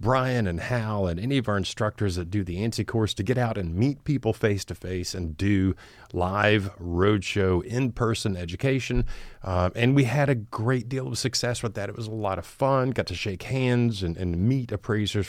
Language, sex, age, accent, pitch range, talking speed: English, male, 40-59, American, 95-125 Hz, 200 wpm